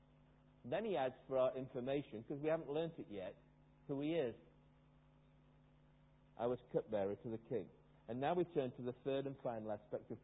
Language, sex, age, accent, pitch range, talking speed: English, male, 50-69, British, 125-155 Hz, 190 wpm